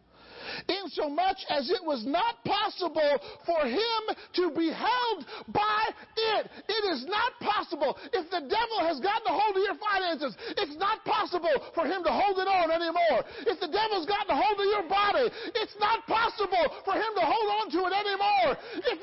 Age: 50-69